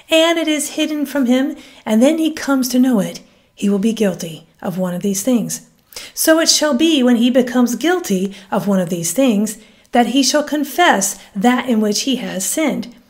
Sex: female